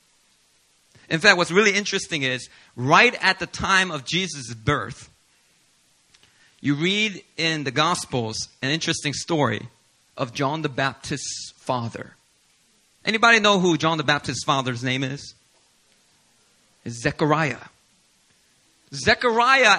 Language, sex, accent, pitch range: English, male, American, 135-220 Hz